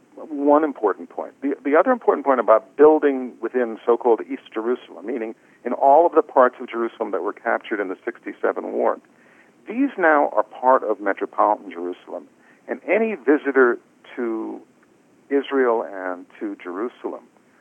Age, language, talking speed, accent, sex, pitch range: 50-69, English, 150 wpm, American, male, 115-160 Hz